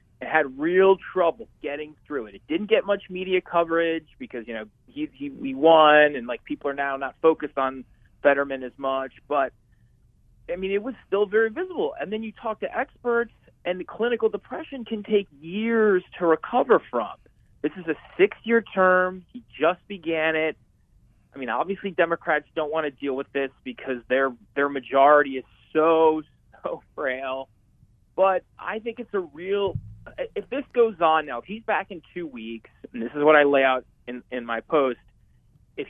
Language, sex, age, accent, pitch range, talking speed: English, male, 30-49, American, 125-185 Hz, 185 wpm